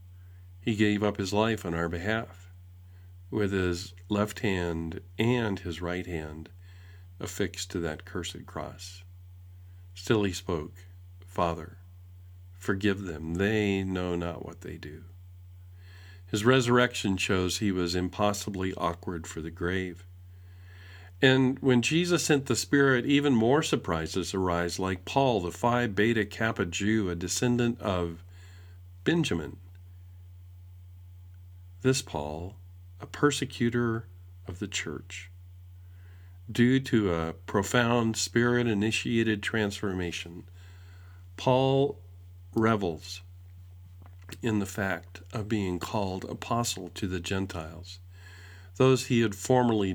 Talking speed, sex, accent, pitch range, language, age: 110 wpm, male, American, 90-105 Hz, English, 50-69